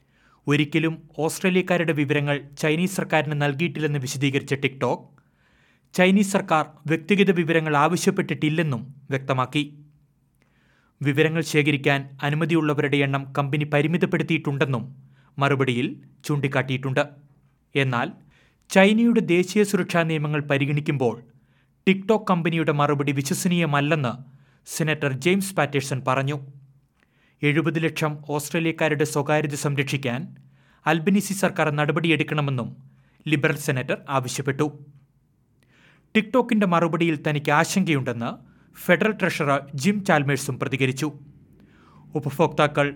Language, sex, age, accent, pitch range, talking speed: Malayalam, male, 30-49, native, 140-165 Hz, 80 wpm